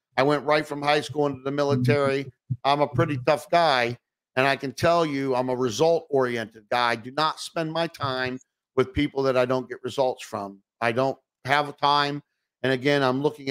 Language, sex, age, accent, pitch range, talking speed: English, male, 50-69, American, 125-155 Hz, 195 wpm